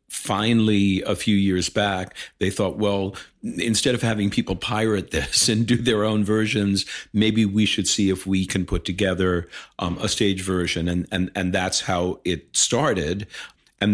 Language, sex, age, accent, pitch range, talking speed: English, male, 50-69, American, 90-110 Hz, 175 wpm